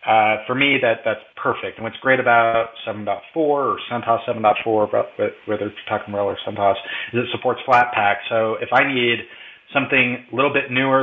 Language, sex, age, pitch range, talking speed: English, male, 30-49, 105-120 Hz, 180 wpm